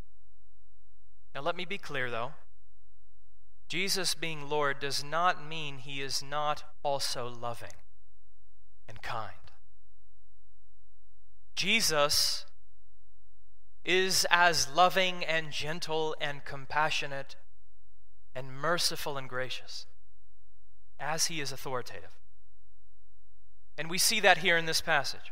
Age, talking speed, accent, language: 30-49, 100 wpm, American, English